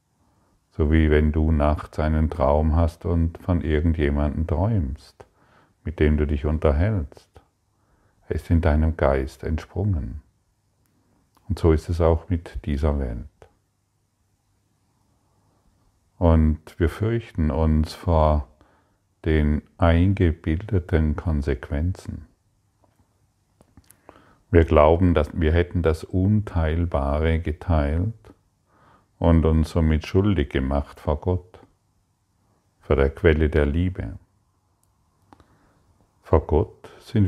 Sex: male